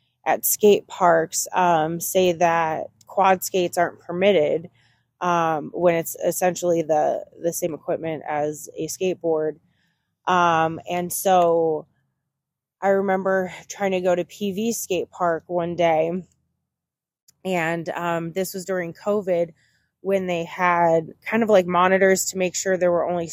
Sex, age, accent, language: female, 20-39, American, English